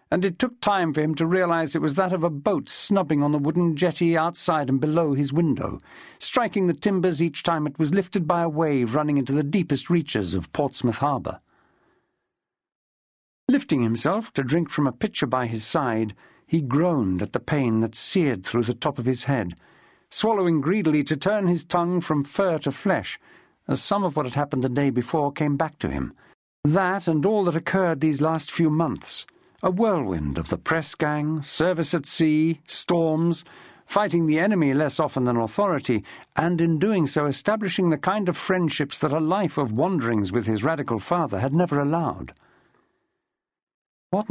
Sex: male